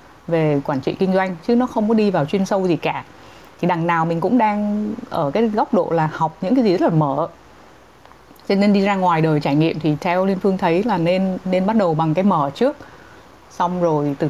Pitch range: 160-220 Hz